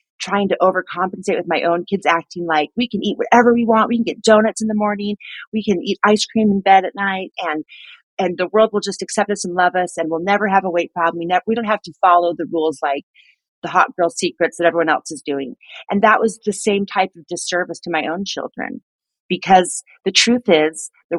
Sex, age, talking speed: female, 40-59, 240 wpm